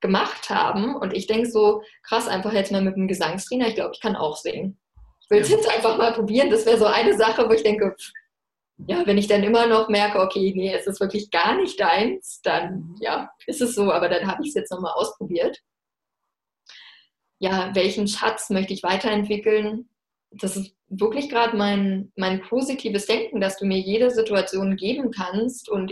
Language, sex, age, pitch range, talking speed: German, female, 20-39, 195-230 Hz, 195 wpm